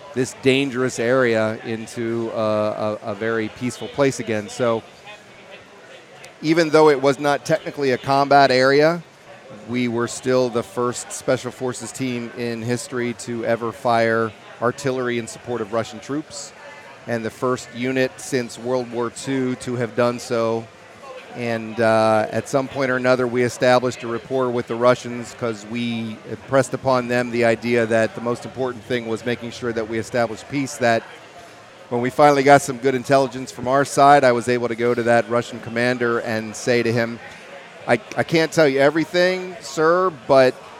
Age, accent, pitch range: 40-59, American, 115-135 Hz